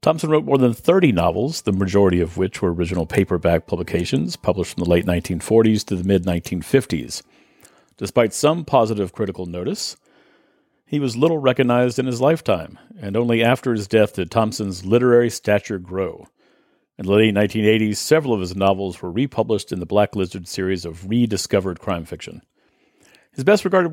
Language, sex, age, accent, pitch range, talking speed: English, male, 50-69, American, 95-130 Hz, 165 wpm